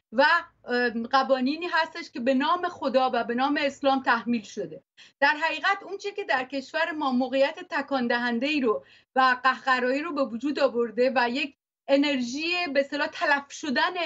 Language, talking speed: Persian, 150 wpm